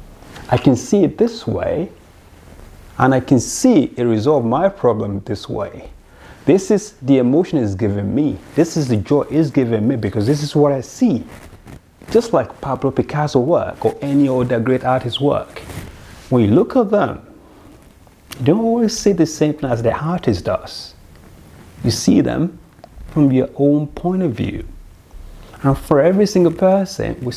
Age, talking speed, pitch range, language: 30-49, 170 wpm, 100-160 Hz, English